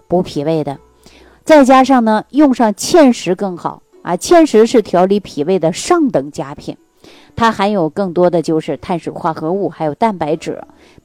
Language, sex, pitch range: Chinese, female, 160-230 Hz